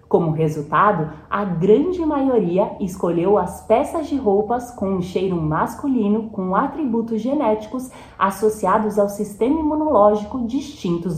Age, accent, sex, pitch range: 30-49, Brazilian, female, 185-265 Hz